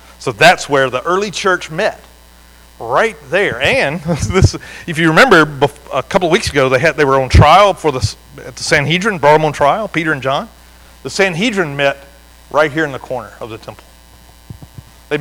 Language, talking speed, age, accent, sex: English, 195 wpm, 40-59, American, male